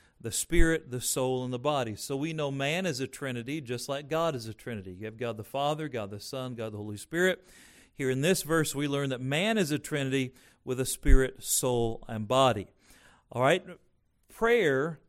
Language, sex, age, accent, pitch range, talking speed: English, male, 40-59, American, 130-170 Hz, 205 wpm